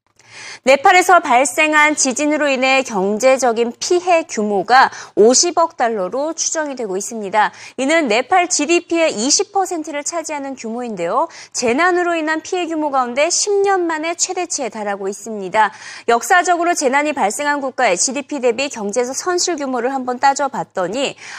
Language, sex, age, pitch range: Korean, female, 30-49, 220-335 Hz